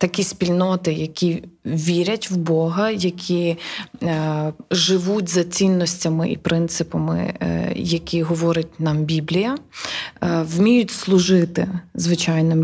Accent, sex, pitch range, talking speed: native, female, 165-185 Hz, 105 wpm